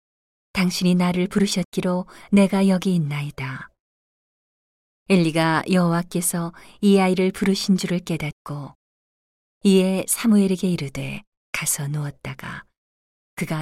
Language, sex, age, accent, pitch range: Korean, female, 40-59, native, 145-185 Hz